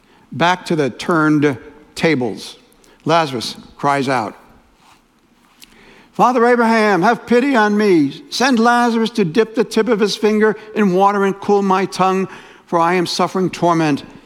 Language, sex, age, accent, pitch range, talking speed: English, male, 60-79, American, 150-215 Hz, 145 wpm